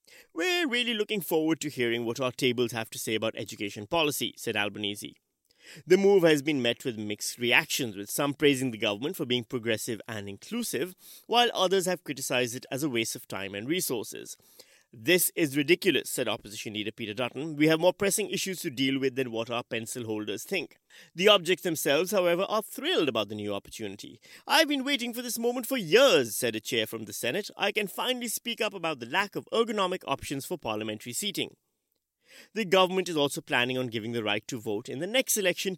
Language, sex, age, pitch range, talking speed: English, male, 30-49, 120-190 Hz, 205 wpm